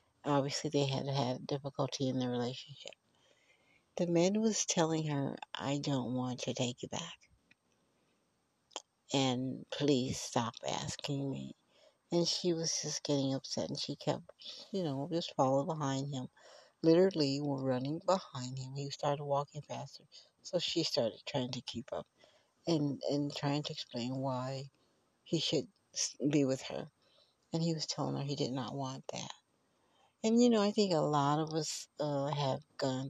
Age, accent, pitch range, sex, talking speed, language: 60-79, American, 125-145 Hz, female, 160 wpm, English